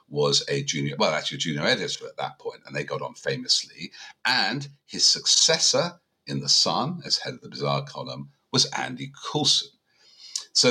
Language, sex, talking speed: English, male, 180 wpm